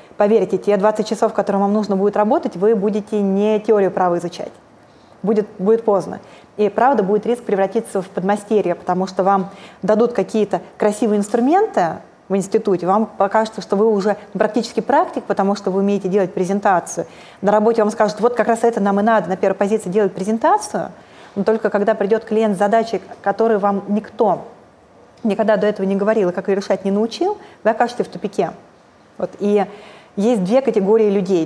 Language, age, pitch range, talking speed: Russian, 20-39, 195-230 Hz, 180 wpm